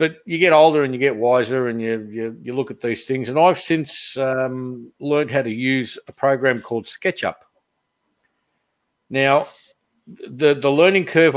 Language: English